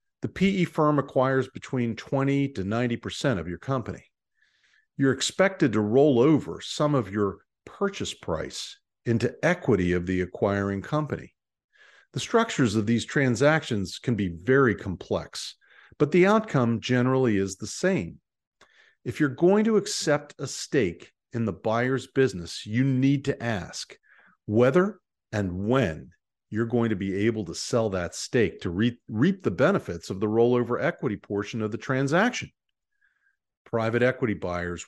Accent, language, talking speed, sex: American, English, 150 wpm, male